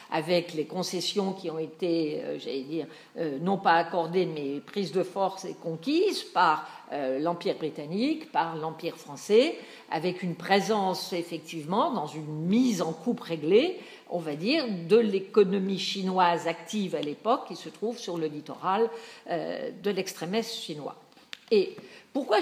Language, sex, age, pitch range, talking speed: French, female, 50-69, 170-250 Hz, 155 wpm